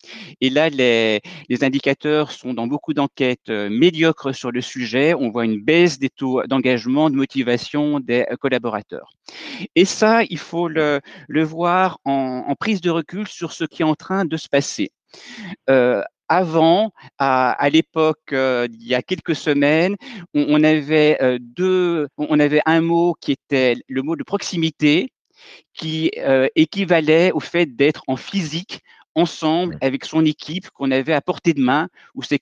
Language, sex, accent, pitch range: French, male, French, 135-175 Hz